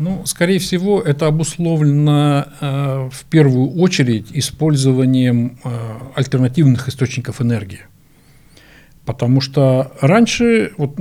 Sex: male